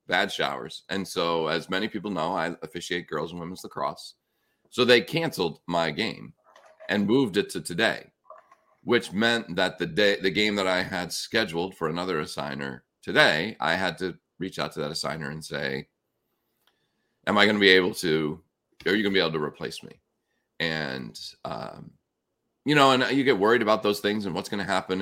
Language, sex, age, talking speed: English, male, 40-59, 195 wpm